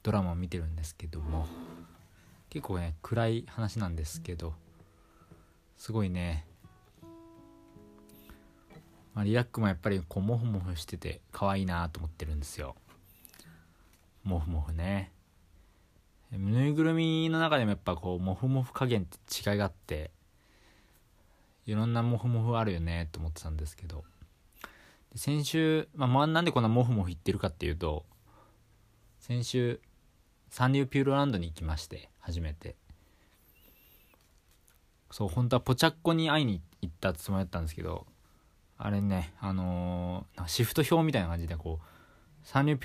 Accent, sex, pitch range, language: native, male, 85-115 Hz, Japanese